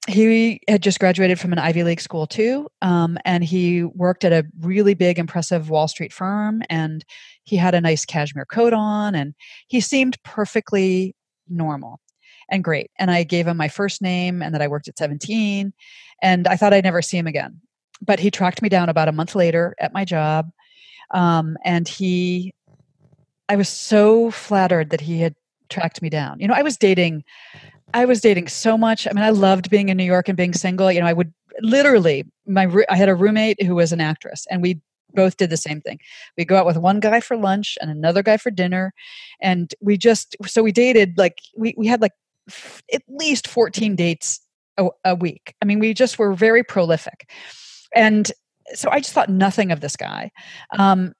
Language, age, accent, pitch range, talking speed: English, 40-59, American, 170-220 Hz, 205 wpm